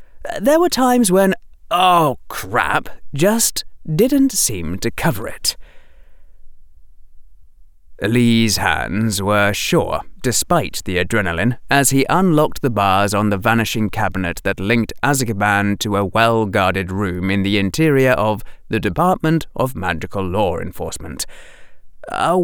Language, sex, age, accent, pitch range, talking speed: English, male, 30-49, British, 95-150 Hz, 125 wpm